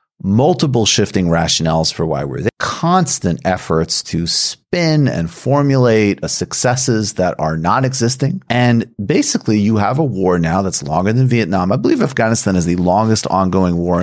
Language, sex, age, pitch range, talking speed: English, male, 30-49, 90-120 Hz, 165 wpm